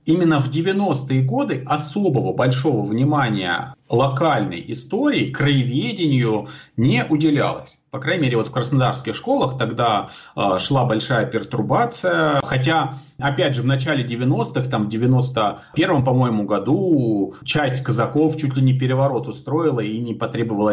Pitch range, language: 125-155 Hz, Russian